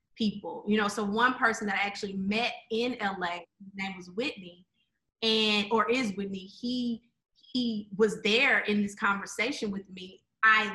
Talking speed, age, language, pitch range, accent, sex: 160 wpm, 20-39, English, 200-240 Hz, American, female